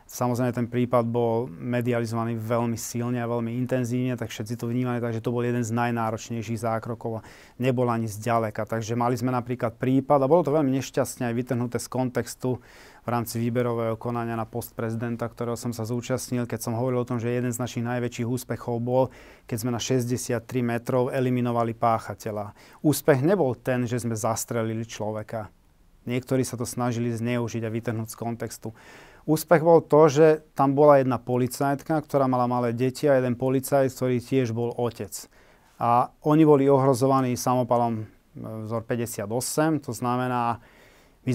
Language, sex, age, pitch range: Slovak, male, 30-49, 115-130 Hz